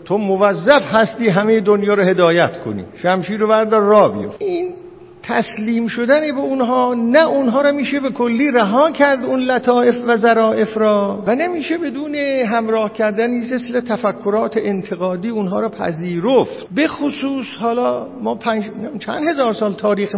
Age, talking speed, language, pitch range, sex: 50-69, 150 wpm, Persian, 180-240 Hz, male